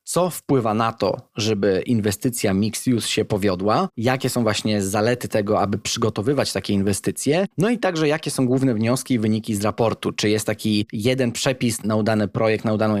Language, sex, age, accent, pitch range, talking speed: Polish, male, 20-39, native, 110-135 Hz, 185 wpm